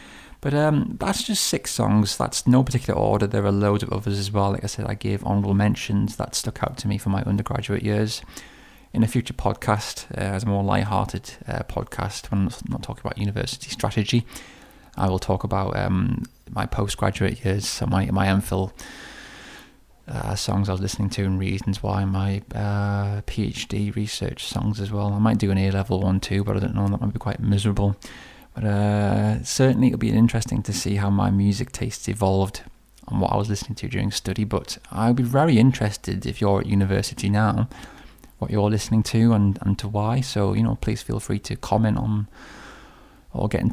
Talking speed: 200 wpm